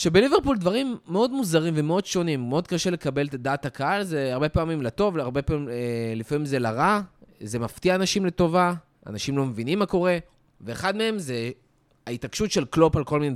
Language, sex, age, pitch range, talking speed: Hebrew, male, 20-39, 130-185 Hz, 180 wpm